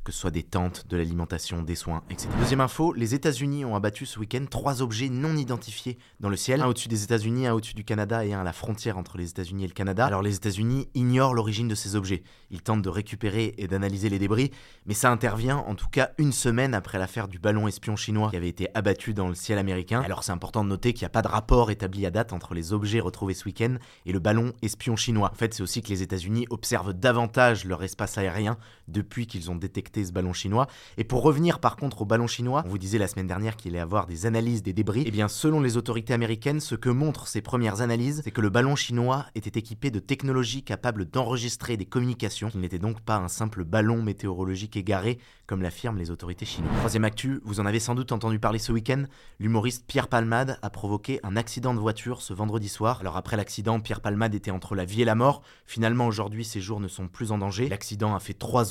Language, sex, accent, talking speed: French, male, French, 240 wpm